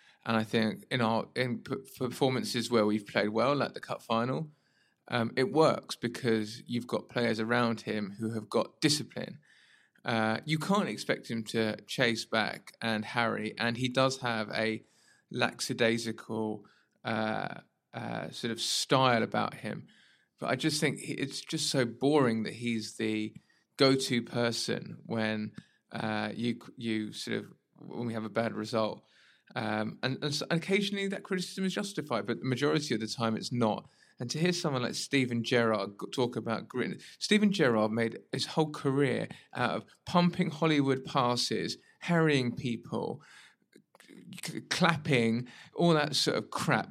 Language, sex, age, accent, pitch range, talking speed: English, male, 20-39, British, 115-150 Hz, 160 wpm